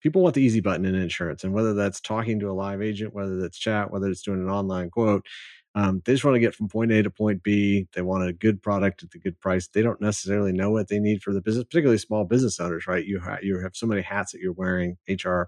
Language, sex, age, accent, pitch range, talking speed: English, male, 30-49, American, 85-100 Hz, 275 wpm